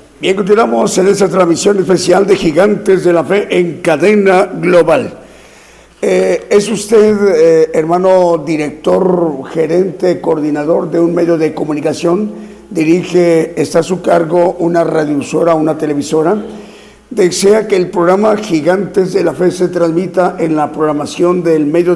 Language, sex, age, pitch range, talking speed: Spanish, male, 50-69, 170-210 Hz, 140 wpm